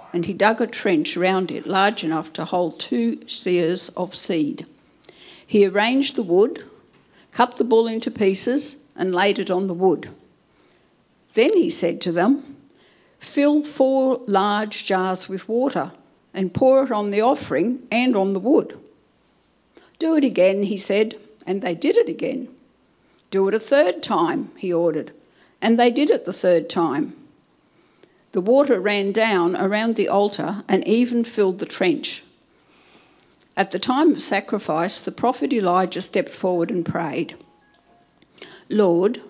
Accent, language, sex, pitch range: Australian, English, female, 180-240 Hz